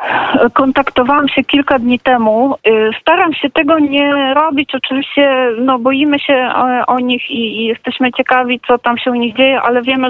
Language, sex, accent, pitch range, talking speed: Polish, female, native, 215-240 Hz, 170 wpm